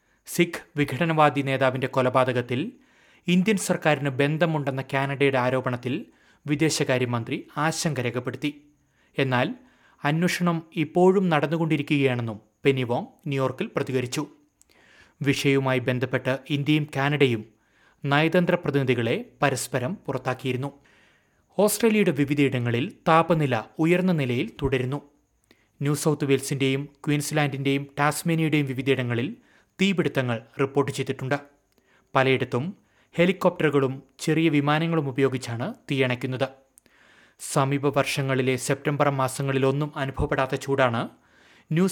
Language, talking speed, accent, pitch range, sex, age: Malayalam, 80 wpm, native, 130-155 Hz, male, 30-49